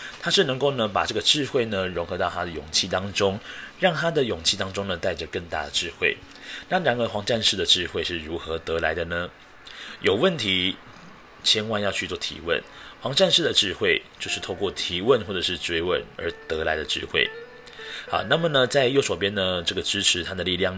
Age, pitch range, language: 30-49, 95-145 Hz, Chinese